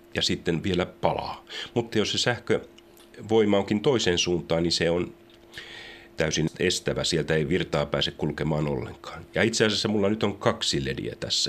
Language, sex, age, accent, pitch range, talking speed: Finnish, male, 40-59, native, 85-115 Hz, 160 wpm